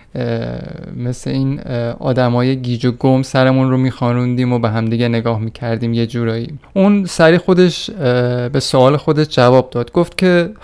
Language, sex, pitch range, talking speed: Persian, male, 120-155 Hz, 160 wpm